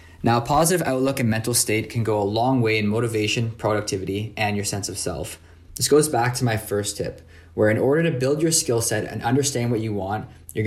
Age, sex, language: 20-39, male, English